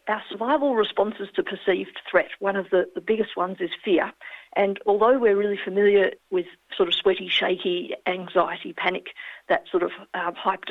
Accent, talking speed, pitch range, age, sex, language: Australian, 175 wpm, 185-215 Hz, 50-69, female, English